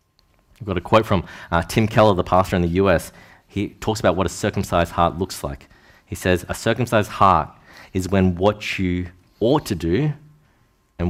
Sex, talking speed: male, 190 wpm